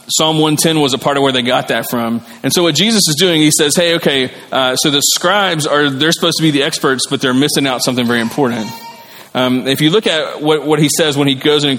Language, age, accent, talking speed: English, 30-49, American, 270 wpm